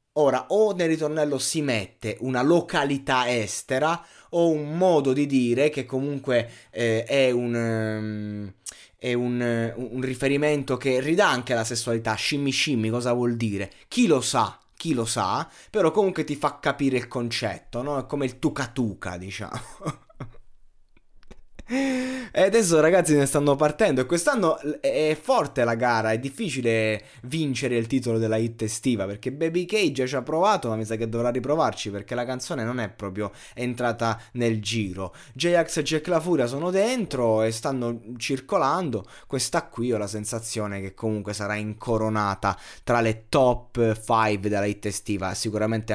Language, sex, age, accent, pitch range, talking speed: Italian, male, 20-39, native, 110-145 Hz, 160 wpm